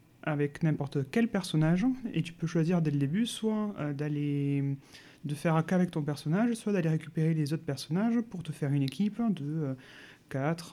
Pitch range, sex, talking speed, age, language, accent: 150-185 Hz, male, 190 wpm, 30-49, French, French